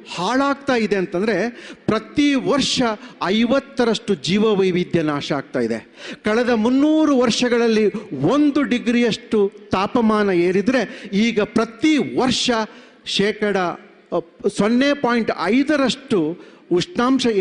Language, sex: Kannada, male